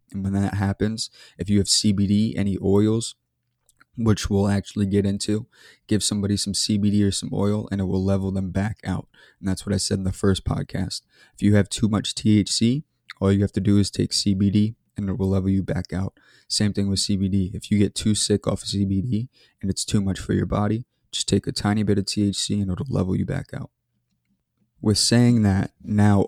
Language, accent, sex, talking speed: English, American, male, 215 wpm